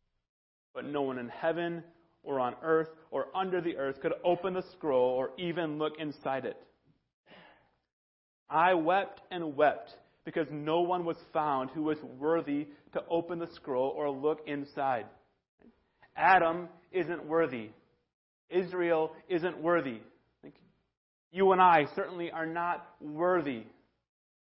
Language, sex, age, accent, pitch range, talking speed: English, male, 30-49, American, 140-175 Hz, 130 wpm